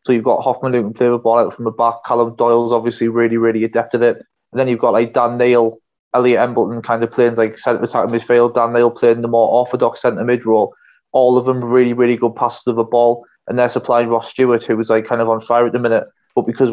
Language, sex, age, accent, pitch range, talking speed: English, male, 20-39, British, 115-125 Hz, 260 wpm